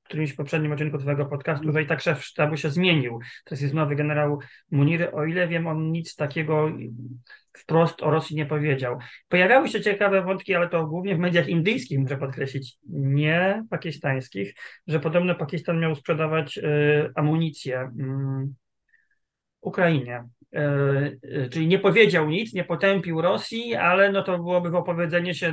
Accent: native